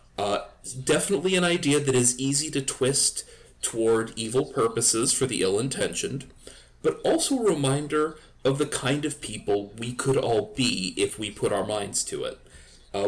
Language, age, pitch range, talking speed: English, 30-49, 120-155 Hz, 165 wpm